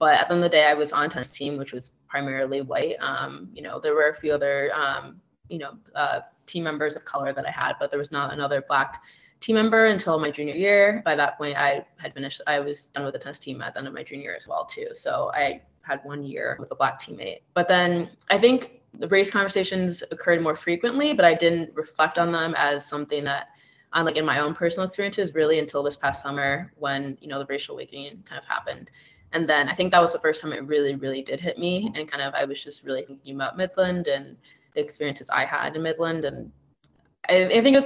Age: 20-39